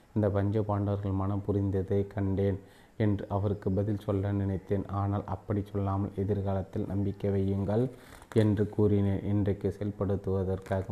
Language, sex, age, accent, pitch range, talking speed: Tamil, male, 30-49, native, 100-105 Hz, 115 wpm